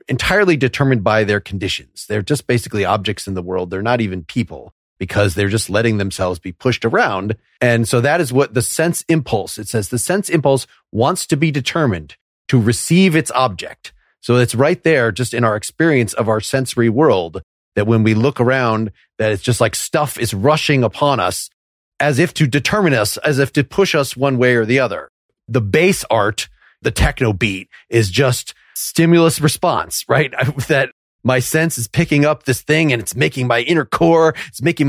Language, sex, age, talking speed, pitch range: English, male, 40-59, 195 wpm, 110-145 Hz